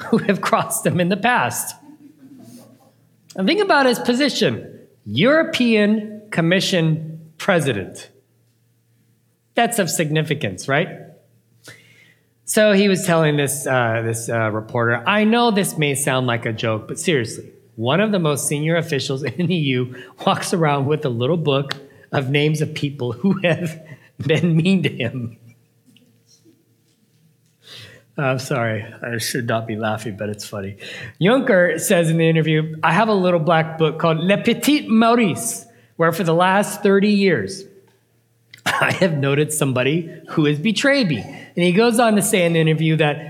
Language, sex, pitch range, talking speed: English, male, 135-195 Hz, 155 wpm